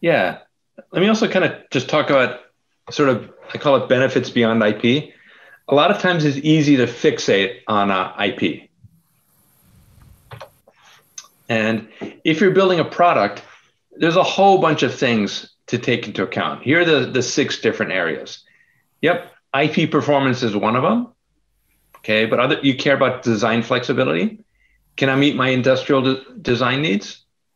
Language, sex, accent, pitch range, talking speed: English, male, American, 115-155 Hz, 160 wpm